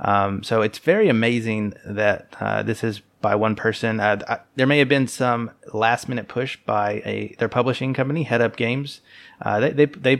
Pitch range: 110-135 Hz